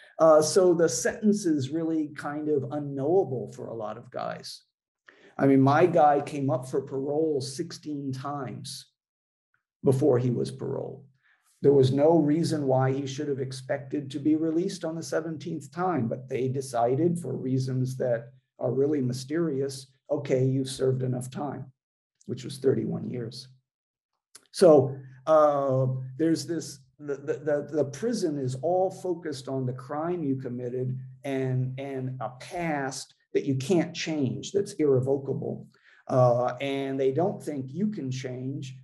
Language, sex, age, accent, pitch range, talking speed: English, male, 50-69, American, 130-150 Hz, 150 wpm